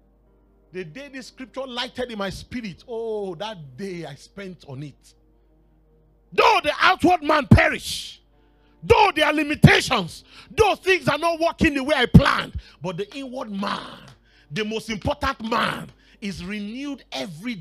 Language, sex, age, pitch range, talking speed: English, male, 40-59, 175-270 Hz, 150 wpm